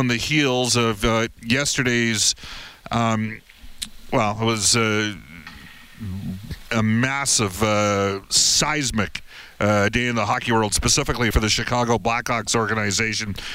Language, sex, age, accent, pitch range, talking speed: English, male, 50-69, American, 105-120 Hz, 115 wpm